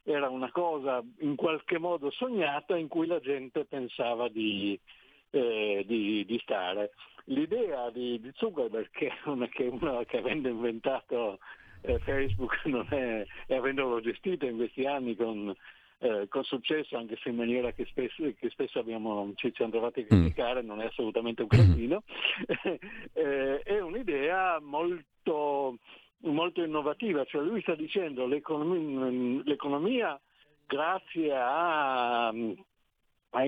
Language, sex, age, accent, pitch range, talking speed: Italian, male, 60-79, native, 120-160 Hz, 135 wpm